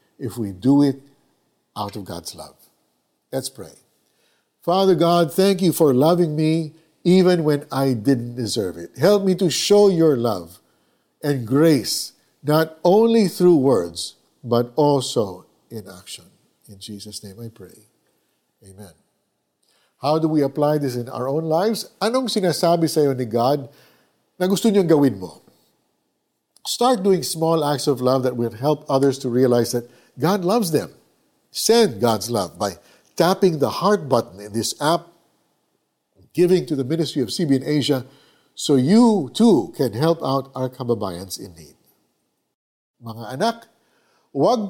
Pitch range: 120-180 Hz